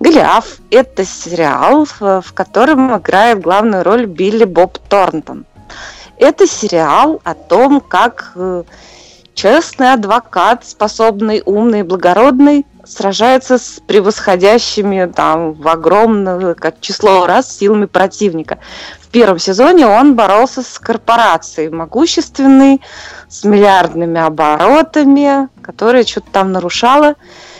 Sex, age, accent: female, 20-39, native